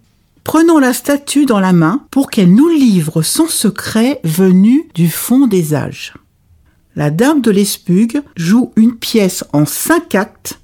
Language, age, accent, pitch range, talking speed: French, 60-79, French, 175-255 Hz, 150 wpm